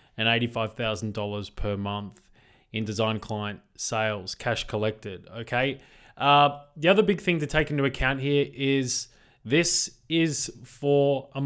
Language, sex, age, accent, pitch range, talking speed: English, male, 20-39, Australian, 115-140 Hz, 135 wpm